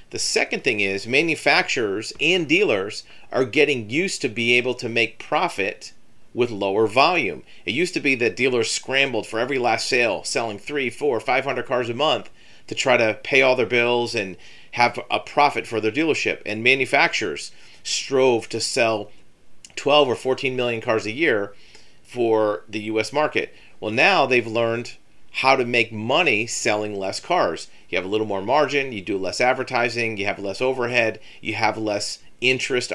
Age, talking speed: 40-59, 175 wpm